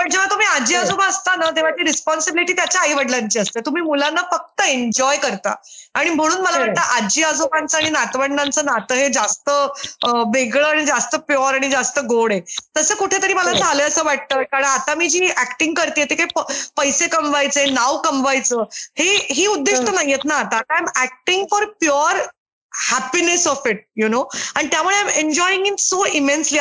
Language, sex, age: Marathi, female, 20-39